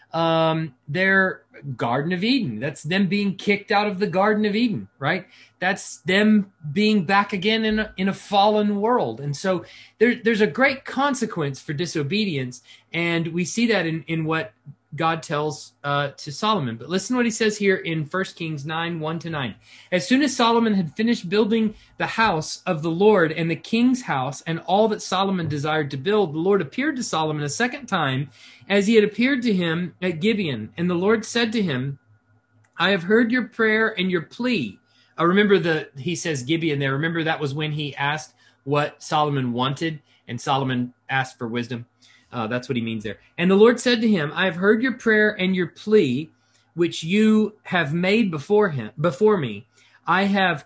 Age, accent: 30-49, American